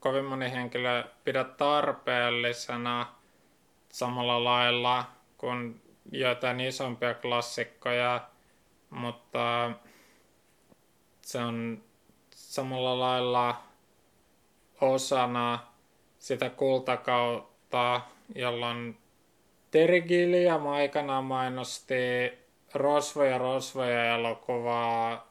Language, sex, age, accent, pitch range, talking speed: Finnish, male, 20-39, native, 115-125 Hz, 60 wpm